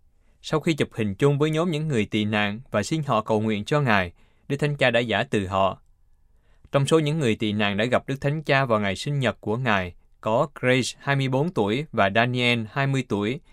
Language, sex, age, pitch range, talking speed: Vietnamese, male, 20-39, 105-140 Hz, 220 wpm